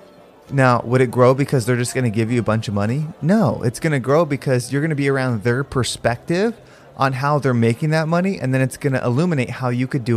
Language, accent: English, American